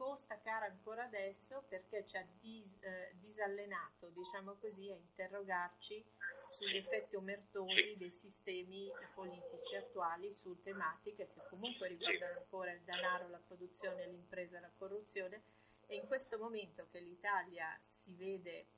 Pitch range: 175-205 Hz